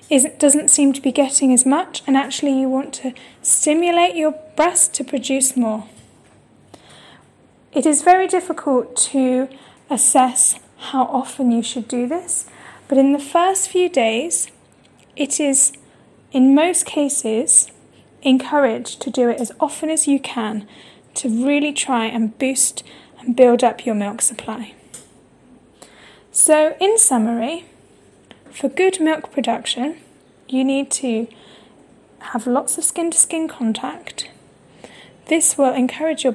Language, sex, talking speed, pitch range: Vietnamese, female, 130 wpm, 240-295 Hz